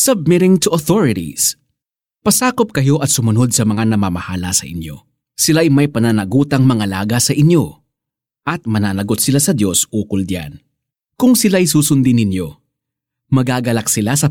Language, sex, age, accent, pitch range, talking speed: Filipino, male, 20-39, native, 110-150 Hz, 145 wpm